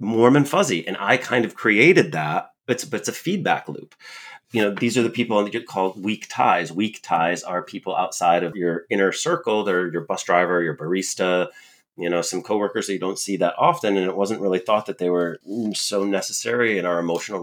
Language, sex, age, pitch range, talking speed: English, male, 30-49, 90-105 Hz, 220 wpm